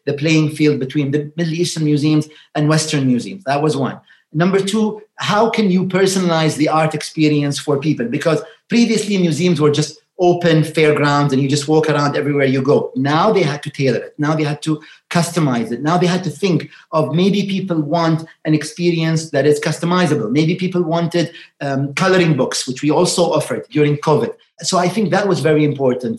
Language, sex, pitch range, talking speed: English, male, 150-185 Hz, 195 wpm